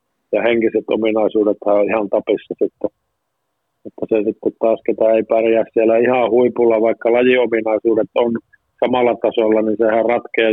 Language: Finnish